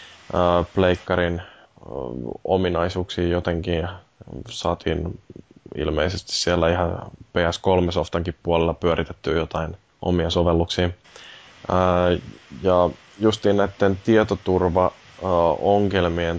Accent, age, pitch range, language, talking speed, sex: native, 20-39, 80-90 Hz, Finnish, 75 wpm, male